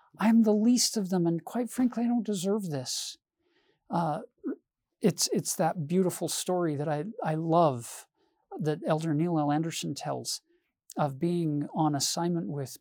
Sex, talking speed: male, 155 wpm